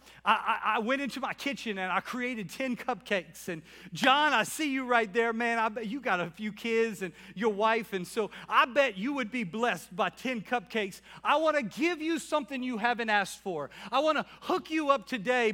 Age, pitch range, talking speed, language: 40-59, 180-270 Hz, 220 wpm, English